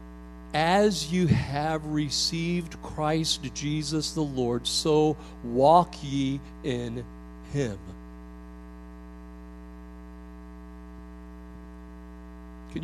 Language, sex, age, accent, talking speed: English, male, 50-69, American, 65 wpm